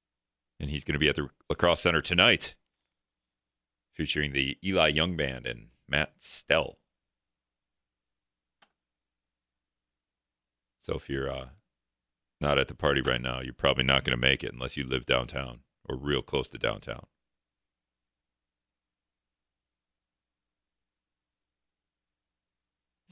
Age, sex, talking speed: 40-59, male, 115 wpm